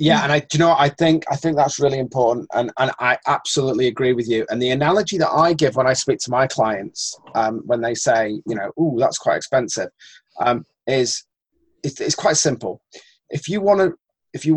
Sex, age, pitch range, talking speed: male, 30-49, 125-155 Hz, 200 wpm